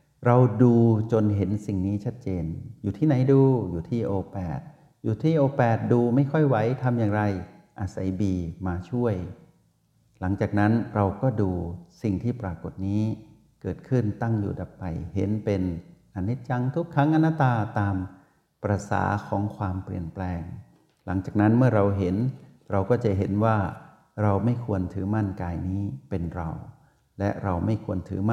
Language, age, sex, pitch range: Thai, 60-79, male, 95-125 Hz